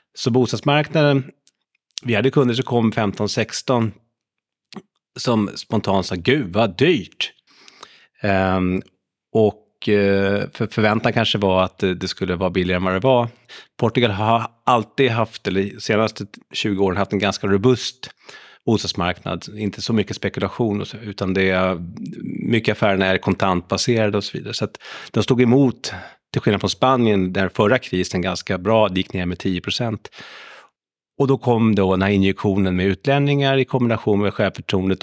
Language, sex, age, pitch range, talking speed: Swedish, male, 30-49, 95-115 Hz, 145 wpm